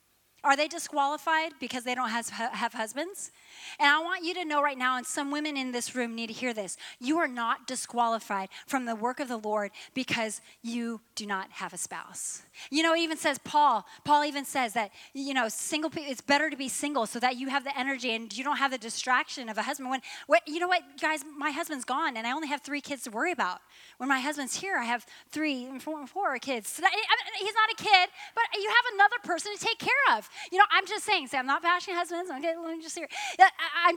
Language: English